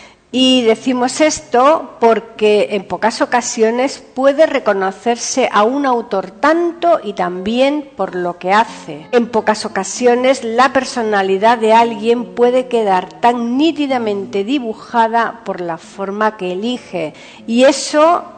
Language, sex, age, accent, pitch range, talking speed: Spanish, female, 50-69, Spanish, 200-250 Hz, 125 wpm